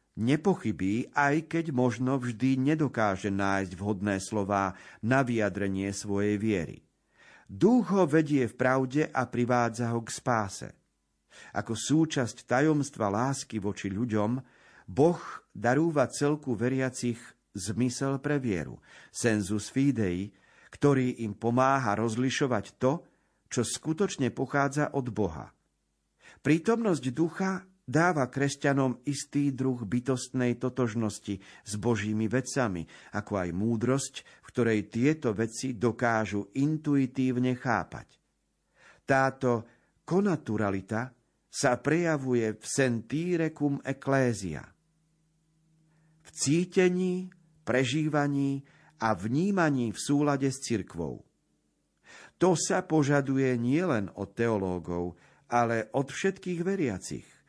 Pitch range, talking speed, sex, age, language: 110-145 Hz, 100 wpm, male, 50-69, Slovak